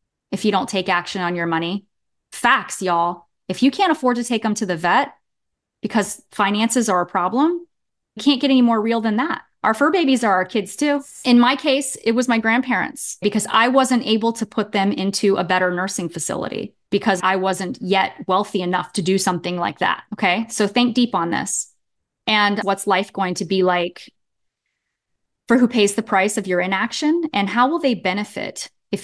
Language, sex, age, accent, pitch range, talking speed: English, female, 30-49, American, 175-225 Hz, 200 wpm